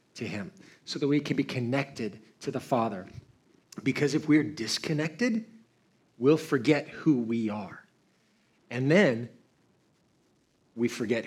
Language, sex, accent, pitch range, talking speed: English, male, American, 125-155 Hz, 130 wpm